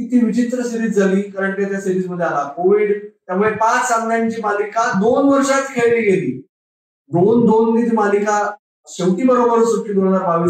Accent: native